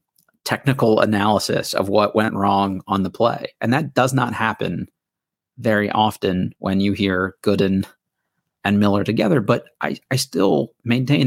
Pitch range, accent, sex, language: 100-130 Hz, American, male, English